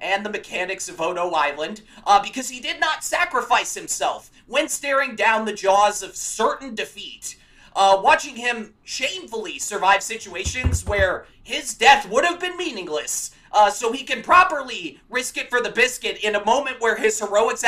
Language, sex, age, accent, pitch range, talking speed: English, male, 30-49, American, 210-285 Hz, 170 wpm